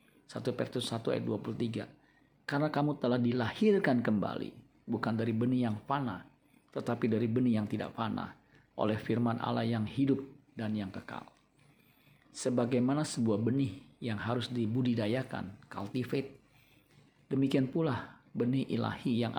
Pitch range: 115-130 Hz